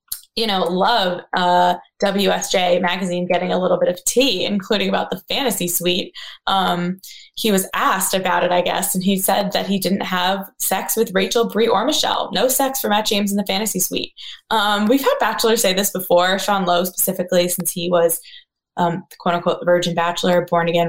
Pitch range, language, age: 180-225 Hz, English, 20-39